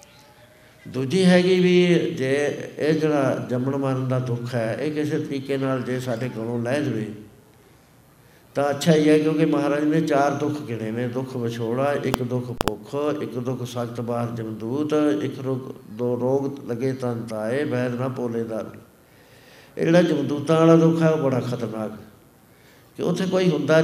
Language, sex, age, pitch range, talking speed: Punjabi, male, 60-79, 125-150 Hz, 160 wpm